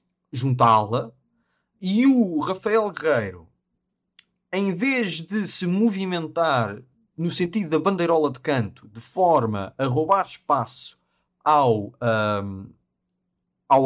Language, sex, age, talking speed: Portuguese, male, 20-39, 105 wpm